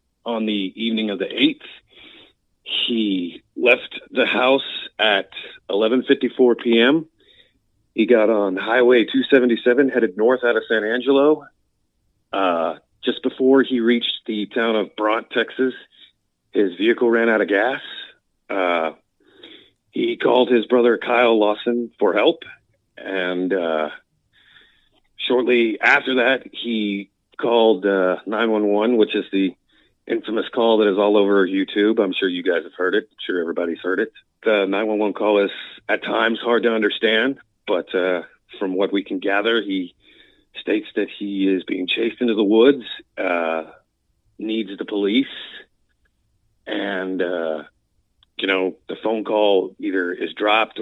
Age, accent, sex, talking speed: 40-59, American, male, 140 wpm